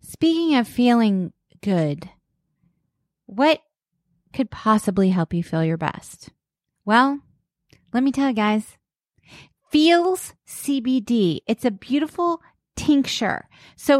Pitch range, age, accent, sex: 210-310 Hz, 30-49, American, female